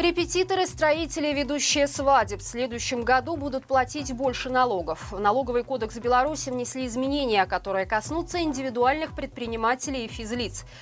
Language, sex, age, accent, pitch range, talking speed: Russian, female, 20-39, native, 220-290 Hz, 130 wpm